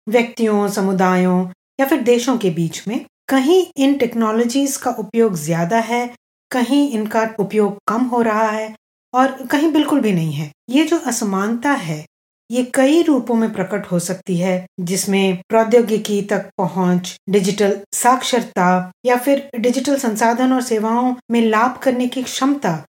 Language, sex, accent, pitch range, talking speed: Hindi, female, native, 195-260 Hz, 150 wpm